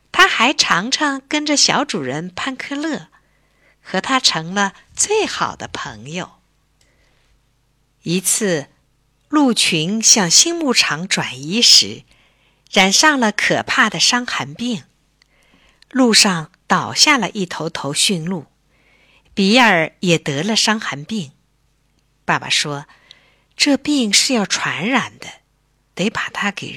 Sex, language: female, Chinese